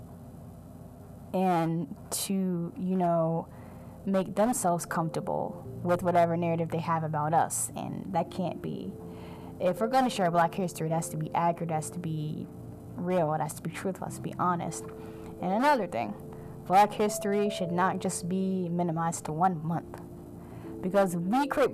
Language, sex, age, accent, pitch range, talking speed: English, female, 10-29, American, 160-190 Hz, 165 wpm